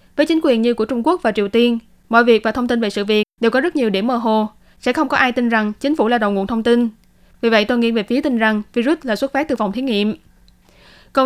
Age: 10-29